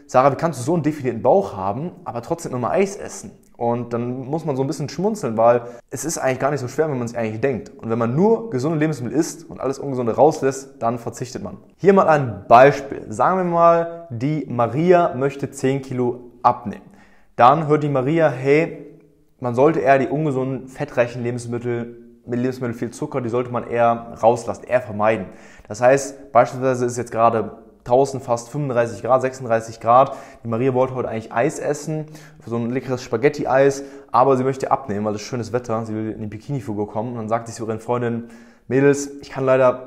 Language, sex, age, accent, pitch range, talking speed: German, male, 20-39, German, 115-140 Hz, 200 wpm